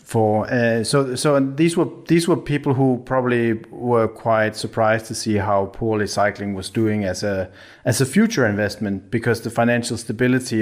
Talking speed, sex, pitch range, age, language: 175 wpm, male, 105-130 Hz, 30-49, English